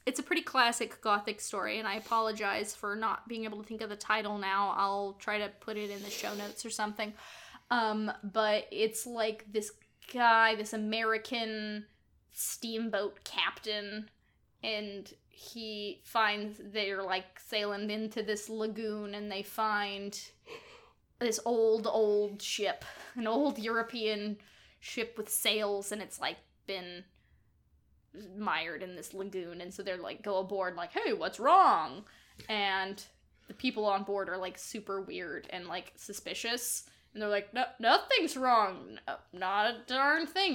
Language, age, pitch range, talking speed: English, 10-29, 200-230 Hz, 150 wpm